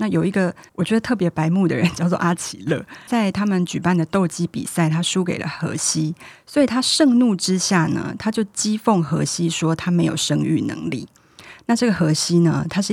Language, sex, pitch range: Chinese, female, 165-200 Hz